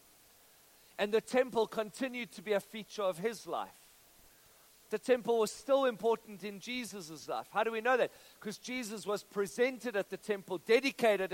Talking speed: 170 wpm